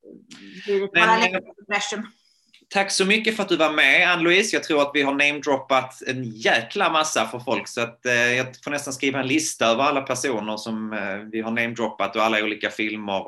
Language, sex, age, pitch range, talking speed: Swedish, male, 20-39, 110-145 Hz, 195 wpm